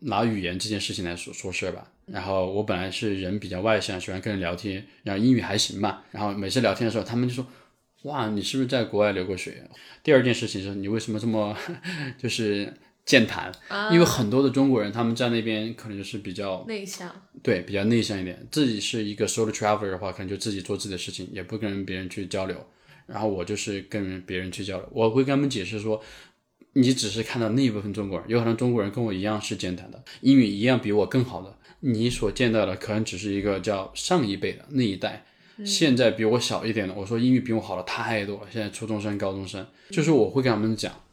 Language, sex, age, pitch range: Chinese, male, 20-39, 100-130 Hz